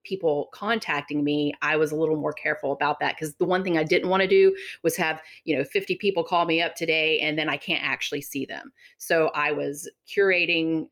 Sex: female